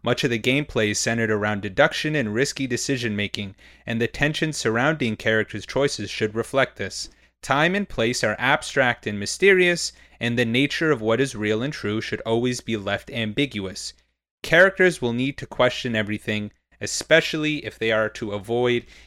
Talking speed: 170 wpm